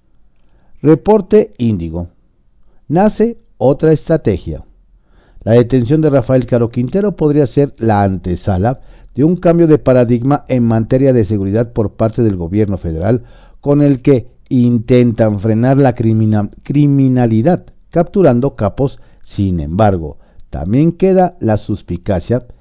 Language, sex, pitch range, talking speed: Spanish, male, 100-145 Hz, 120 wpm